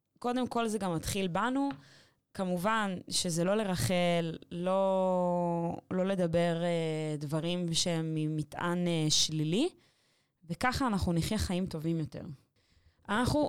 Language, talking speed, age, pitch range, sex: Hebrew, 115 wpm, 20-39, 175-245 Hz, female